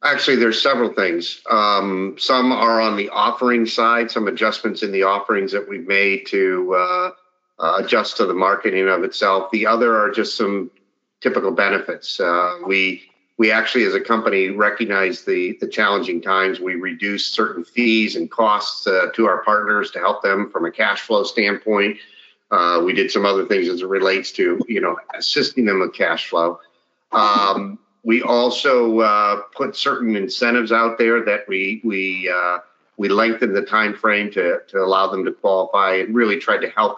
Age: 50-69